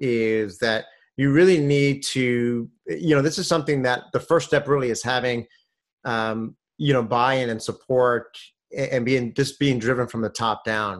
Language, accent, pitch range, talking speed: English, American, 120-145 Hz, 180 wpm